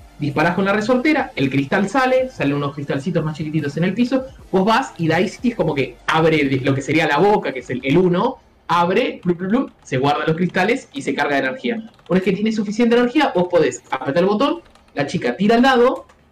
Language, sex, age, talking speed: Spanish, male, 20-39, 230 wpm